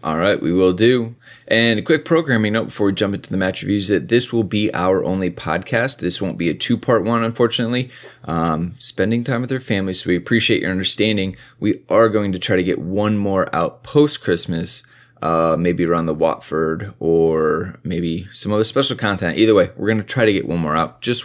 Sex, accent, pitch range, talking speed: male, American, 90-120 Hz, 225 wpm